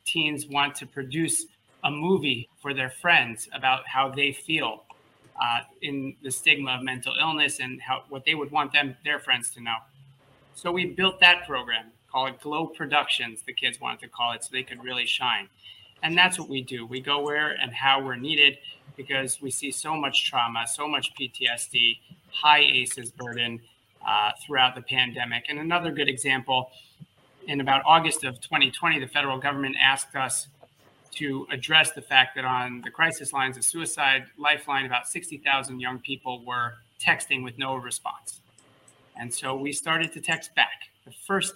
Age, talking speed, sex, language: 30-49, 180 wpm, male, English